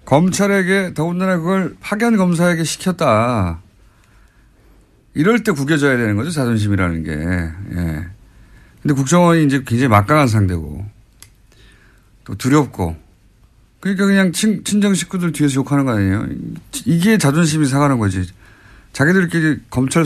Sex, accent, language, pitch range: male, native, Korean, 105-175 Hz